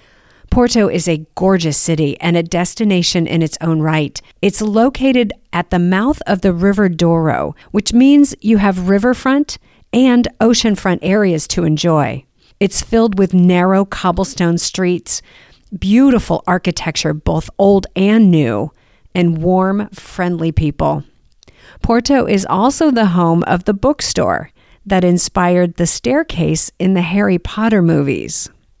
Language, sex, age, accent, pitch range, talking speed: English, female, 50-69, American, 170-225 Hz, 135 wpm